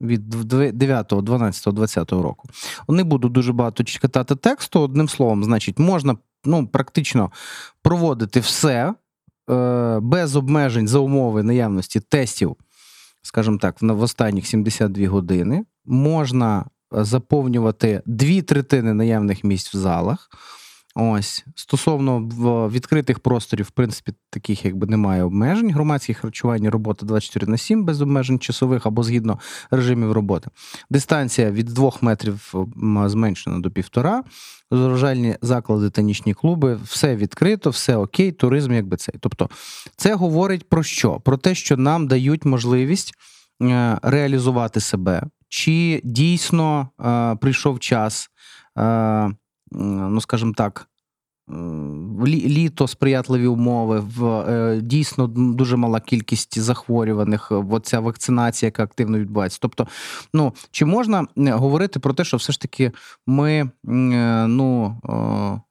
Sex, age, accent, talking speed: male, 30-49, native, 115 wpm